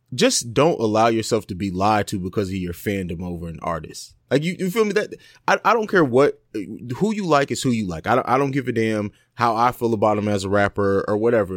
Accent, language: American, English